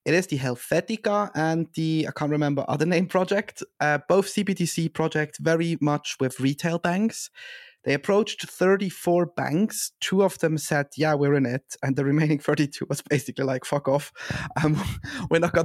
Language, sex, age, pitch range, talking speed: English, male, 30-49, 135-165 Hz, 175 wpm